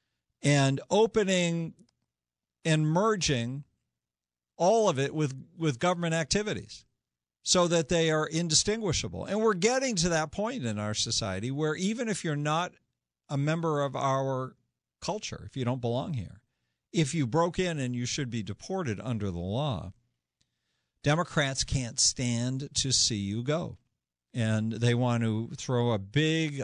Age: 50-69